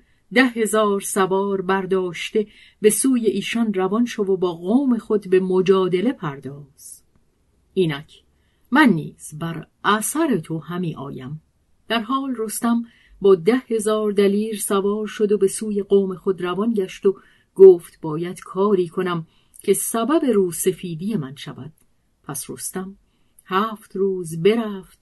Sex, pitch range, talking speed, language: female, 165-215 Hz, 130 wpm, Persian